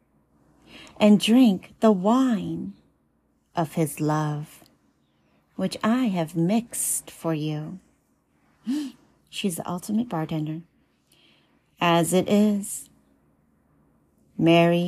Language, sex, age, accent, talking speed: English, female, 40-59, American, 85 wpm